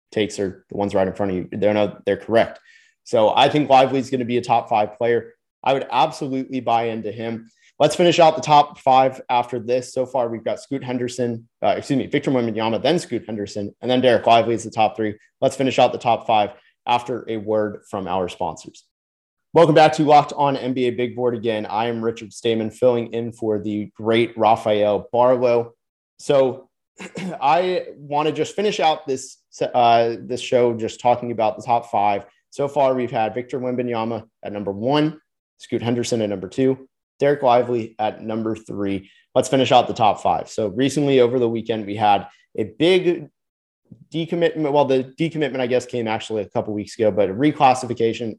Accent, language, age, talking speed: American, English, 30-49, 195 wpm